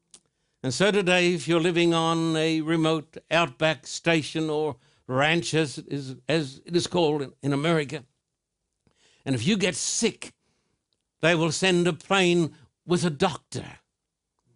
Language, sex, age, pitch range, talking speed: English, male, 60-79, 140-175 Hz, 135 wpm